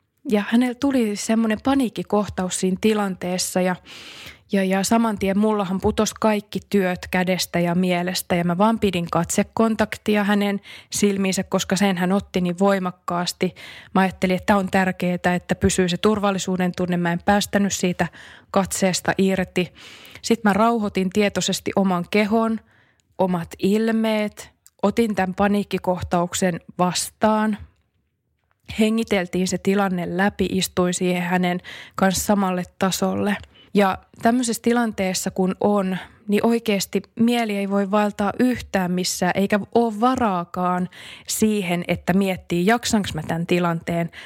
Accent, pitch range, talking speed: native, 180-210 Hz, 125 wpm